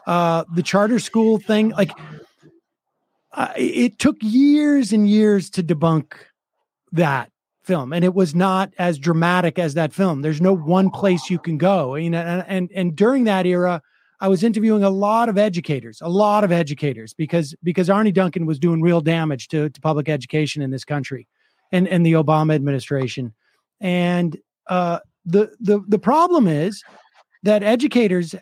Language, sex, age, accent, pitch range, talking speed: English, male, 30-49, American, 175-220 Hz, 165 wpm